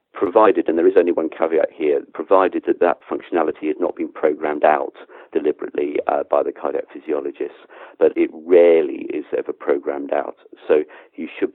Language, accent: English, British